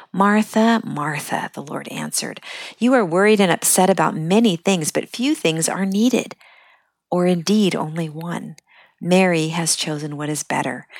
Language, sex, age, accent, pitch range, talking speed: English, female, 50-69, American, 155-205 Hz, 155 wpm